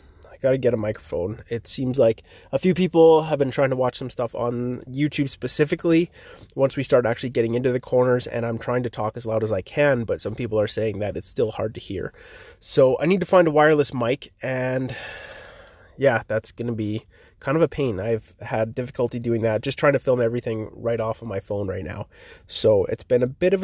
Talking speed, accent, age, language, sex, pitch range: 230 wpm, American, 30-49, English, male, 120-150 Hz